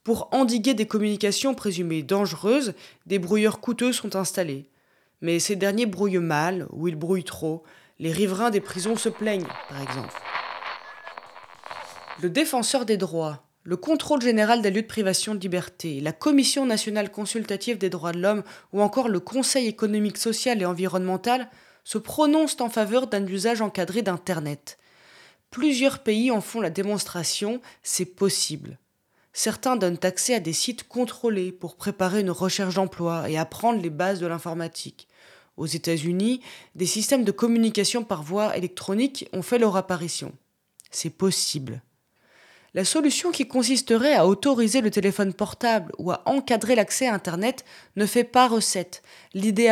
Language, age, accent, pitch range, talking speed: French, 20-39, French, 180-235 Hz, 155 wpm